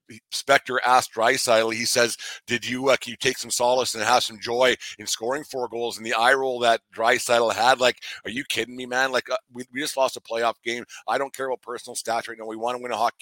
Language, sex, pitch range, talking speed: English, male, 115-125 Hz, 260 wpm